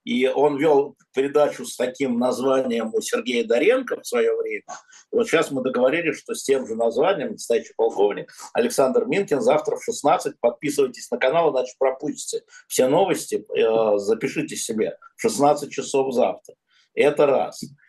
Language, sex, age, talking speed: Russian, male, 50-69, 150 wpm